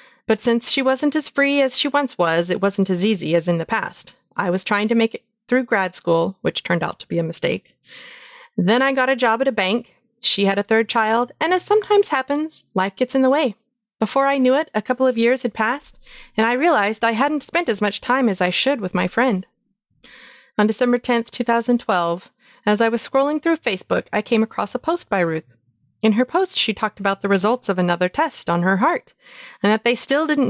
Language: English